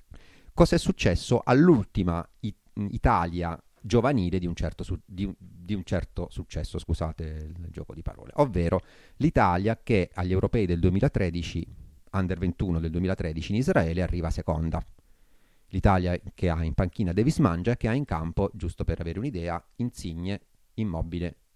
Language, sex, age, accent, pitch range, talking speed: Italian, male, 30-49, native, 85-110 Hz, 155 wpm